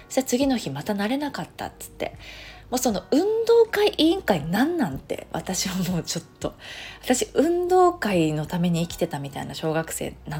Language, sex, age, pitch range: Japanese, female, 20-39, 160-265 Hz